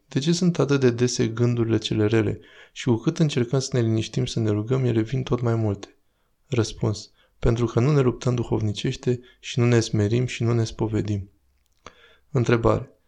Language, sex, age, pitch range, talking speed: Romanian, male, 20-39, 110-130 Hz, 185 wpm